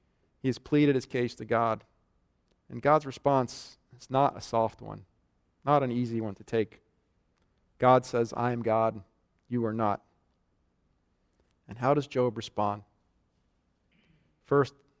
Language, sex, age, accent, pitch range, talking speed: English, male, 40-59, American, 110-130 Hz, 140 wpm